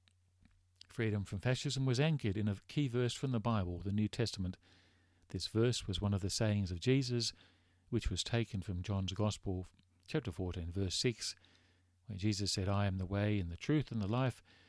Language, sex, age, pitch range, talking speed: English, male, 50-69, 90-115 Hz, 190 wpm